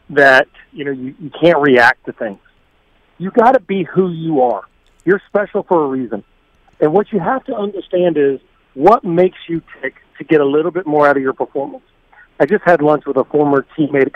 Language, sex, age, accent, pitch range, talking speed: English, male, 40-59, American, 130-170 Hz, 215 wpm